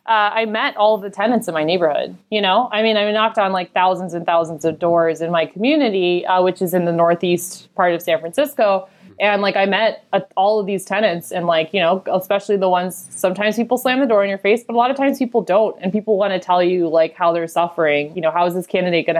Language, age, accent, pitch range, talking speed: English, 20-39, American, 170-210 Hz, 260 wpm